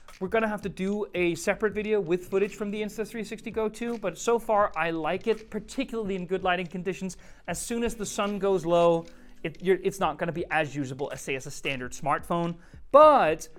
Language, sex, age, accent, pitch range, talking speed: English, male, 30-49, American, 170-225 Hz, 210 wpm